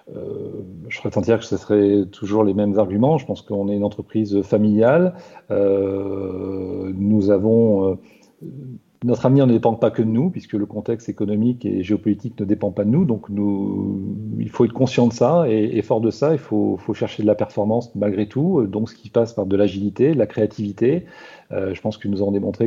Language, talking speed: French, 215 wpm